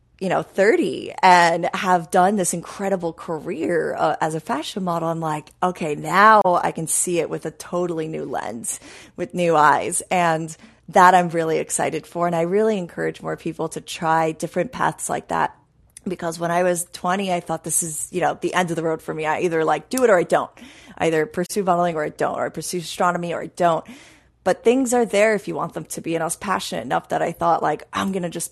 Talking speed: 230 wpm